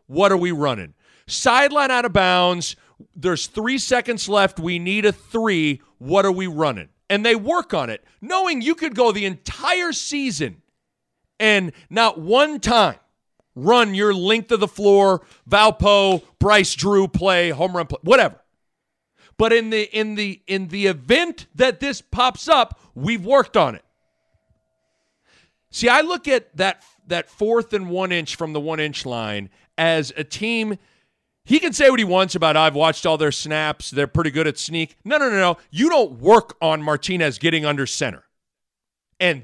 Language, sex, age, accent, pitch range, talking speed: English, male, 40-59, American, 160-235 Hz, 175 wpm